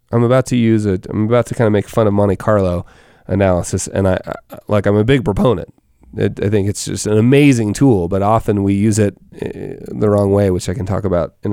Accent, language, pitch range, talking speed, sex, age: American, English, 110-170 Hz, 235 wpm, male, 30-49